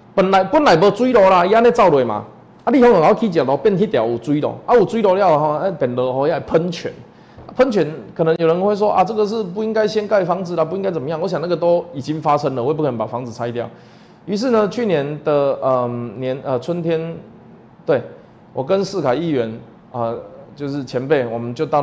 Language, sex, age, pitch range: Chinese, male, 20-39, 140-200 Hz